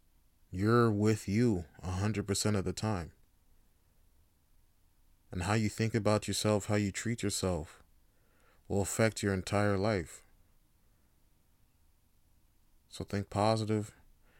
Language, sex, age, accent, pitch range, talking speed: English, male, 30-49, American, 85-140 Hz, 105 wpm